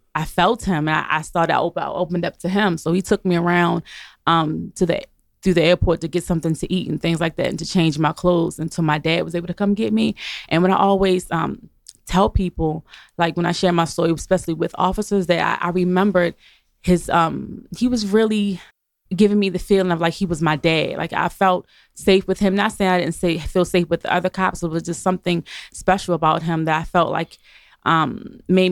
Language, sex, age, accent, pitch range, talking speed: English, female, 20-39, American, 165-185 Hz, 230 wpm